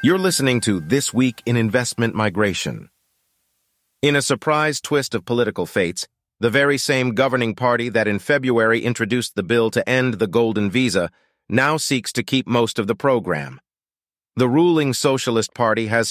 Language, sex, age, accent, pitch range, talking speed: English, male, 40-59, American, 110-135 Hz, 165 wpm